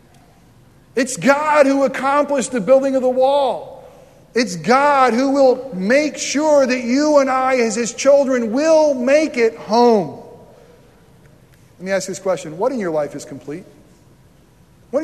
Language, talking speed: English, 155 wpm